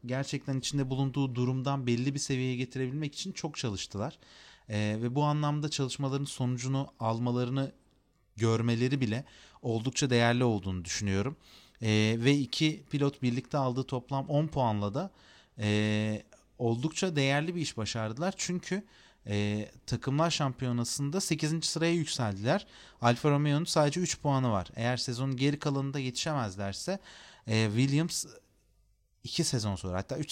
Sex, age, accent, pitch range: male, 30-49, native, 115-145 Hz